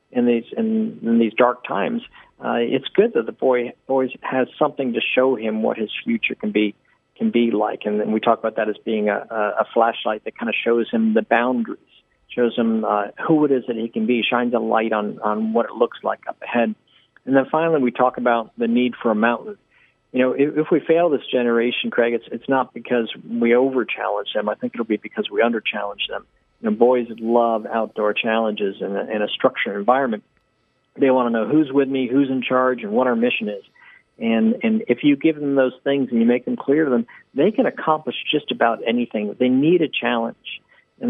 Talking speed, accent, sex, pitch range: 225 wpm, American, male, 115-140 Hz